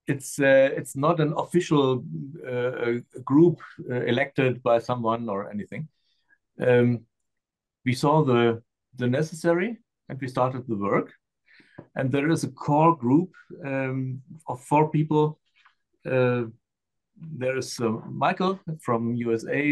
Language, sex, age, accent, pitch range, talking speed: German, male, 60-79, German, 120-150 Hz, 125 wpm